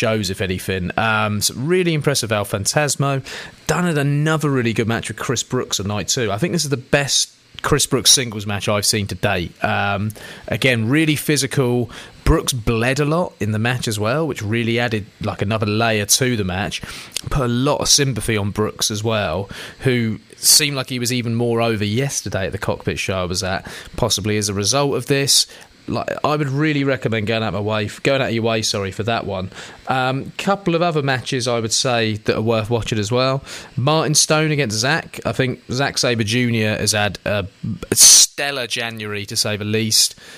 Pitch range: 105-130 Hz